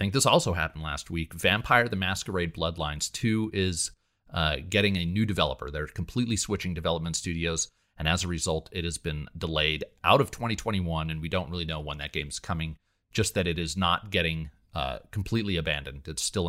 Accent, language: American, English